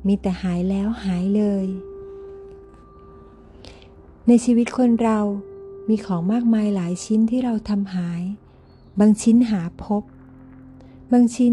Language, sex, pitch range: Thai, female, 185-235 Hz